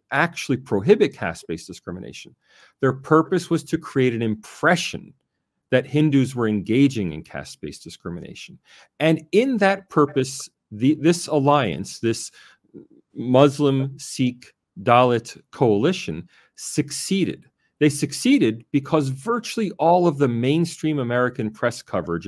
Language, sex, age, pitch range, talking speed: English, male, 40-59, 115-165 Hz, 110 wpm